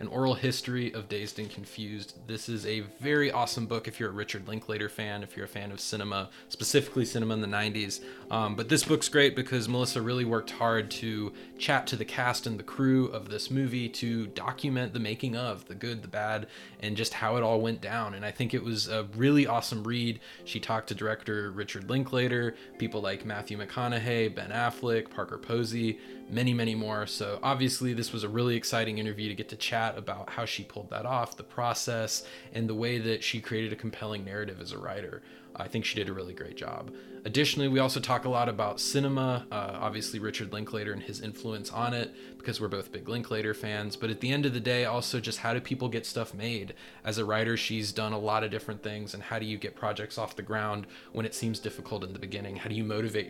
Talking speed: 225 wpm